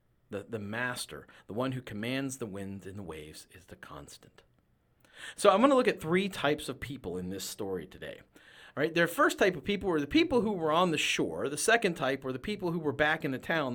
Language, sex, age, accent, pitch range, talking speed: English, male, 40-59, American, 120-200 Hz, 245 wpm